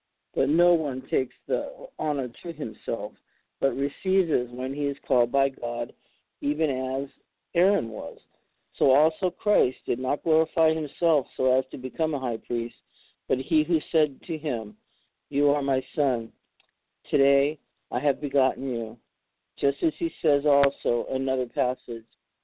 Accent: American